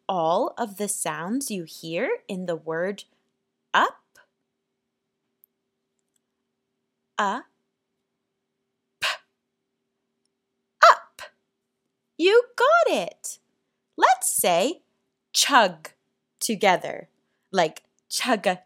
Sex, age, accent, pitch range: female, 20-39, American, 175-280 Hz